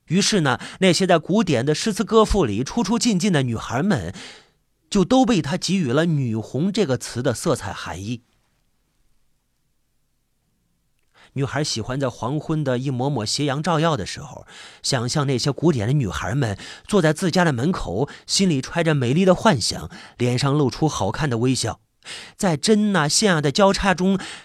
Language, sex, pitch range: Chinese, male, 125-185 Hz